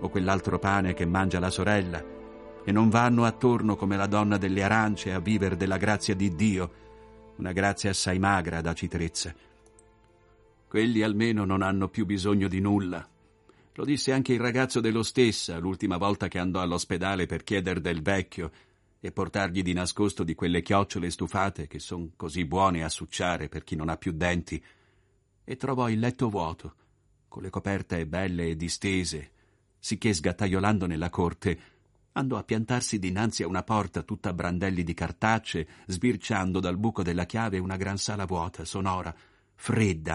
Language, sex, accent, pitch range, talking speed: Italian, male, native, 90-110 Hz, 165 wpm